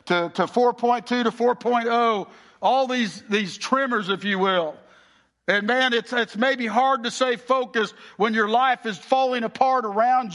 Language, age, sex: English, 60-79, male